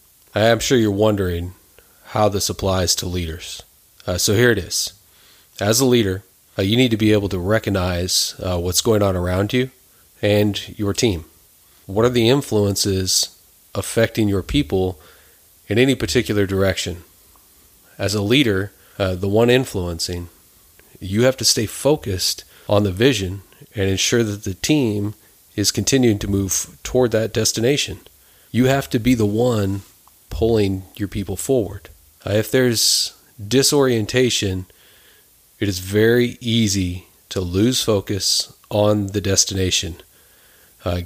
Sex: male